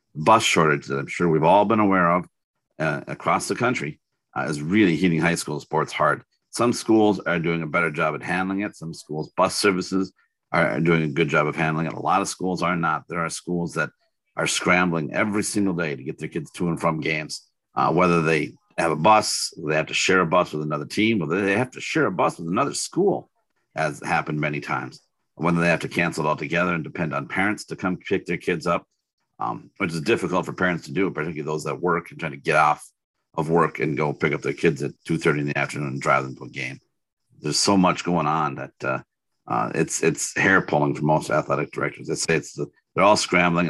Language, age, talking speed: English, 50-69, 240 wpm